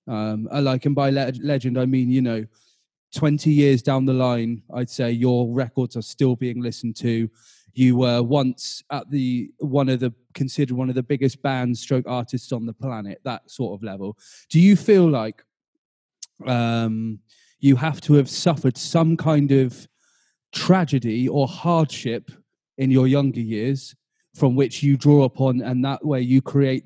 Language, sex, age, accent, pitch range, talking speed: English, male, 20-39, British, 120-140 Hz, 175 wpm